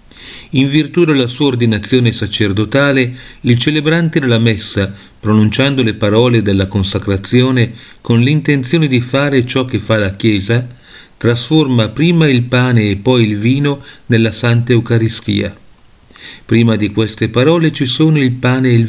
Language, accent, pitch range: Italian, native, 110-135 Hz